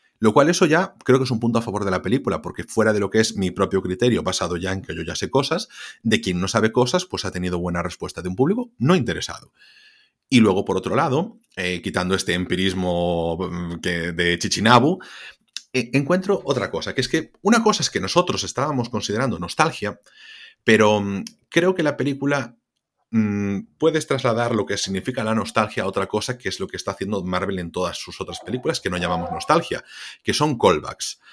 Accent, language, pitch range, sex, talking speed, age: Spanish, Spanish, 90-130 Hz, male, 205 wpm, 30-49